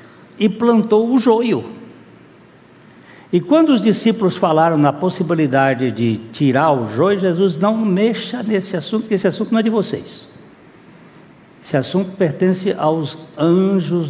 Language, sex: Portuguese, male